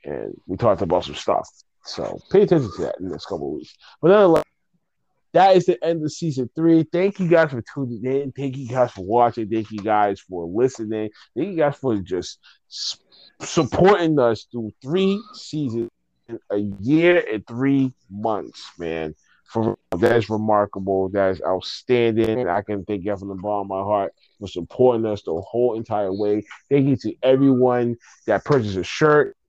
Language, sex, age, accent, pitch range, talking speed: English, male, 20-39, American, 110-150 Hz, 185 wpm